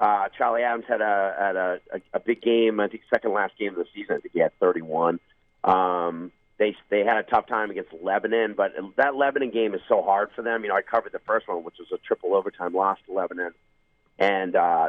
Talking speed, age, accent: 240 wpm, 40-59, American